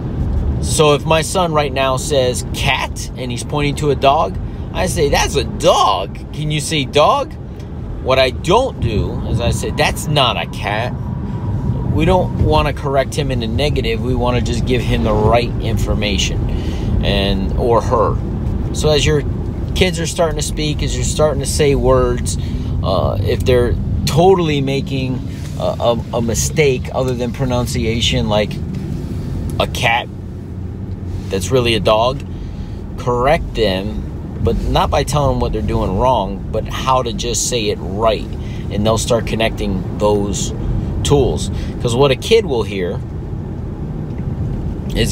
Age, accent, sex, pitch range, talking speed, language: 30-49, American, male, 95-130 Hz, 160 wpm, English